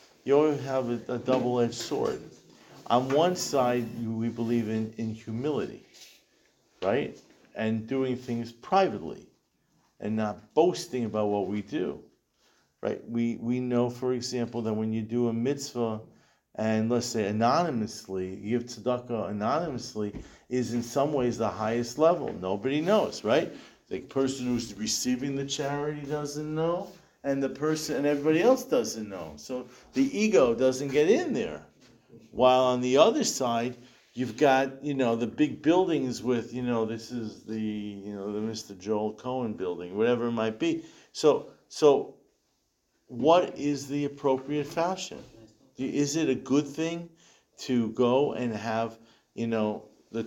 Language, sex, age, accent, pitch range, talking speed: English, male, 50-69, American, 115-140 Hz, 150 wpm